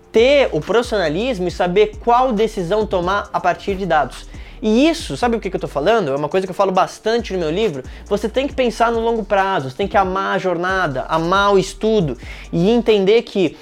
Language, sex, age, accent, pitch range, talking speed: Portuguese, male, 20-39, Brazilian, 155-220 Hz, 215 wpm